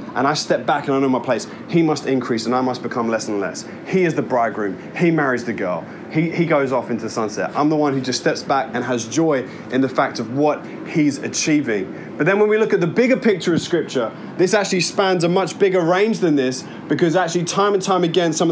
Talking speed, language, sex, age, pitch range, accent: 255 wpm, English, male, 20-39, 140-170 Hz, British